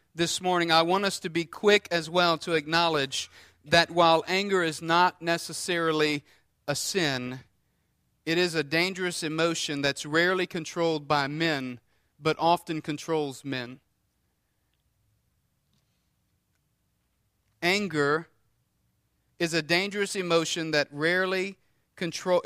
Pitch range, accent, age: 135-170 Hz, American, 40-59